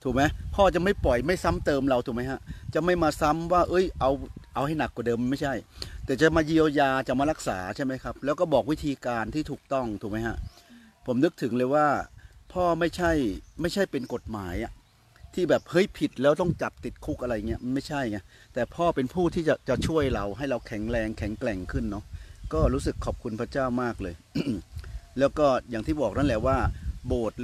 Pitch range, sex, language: 110-155 Hz, male, Thai